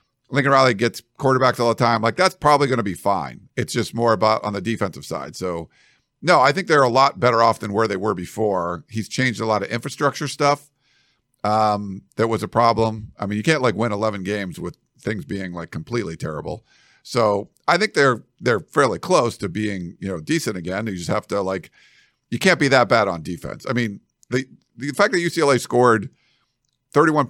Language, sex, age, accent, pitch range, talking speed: English, male, 50-69, American, 105-135 Hz, 210 wpm